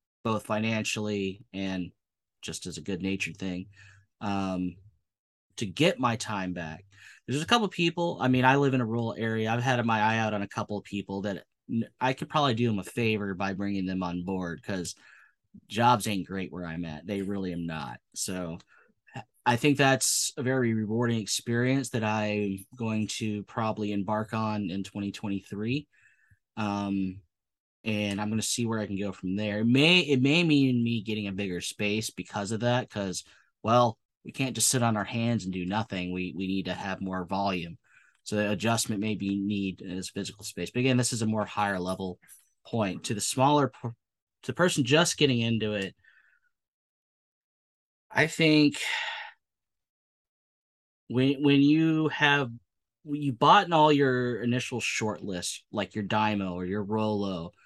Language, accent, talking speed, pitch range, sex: English, American, 180 wpm, 95-125 Hz, male